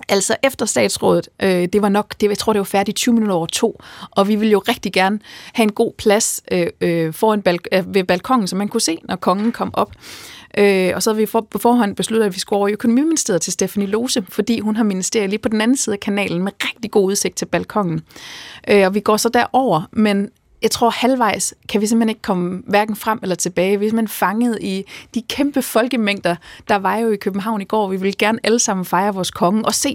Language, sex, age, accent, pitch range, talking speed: Danish, female, 30-49, native, 190-225 Hz, 220 wpm